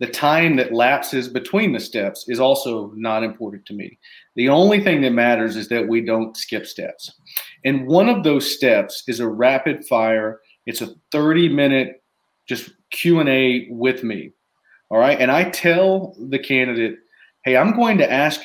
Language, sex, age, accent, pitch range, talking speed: English, male, 40-59, American, 120-160 Hz, 170 wpm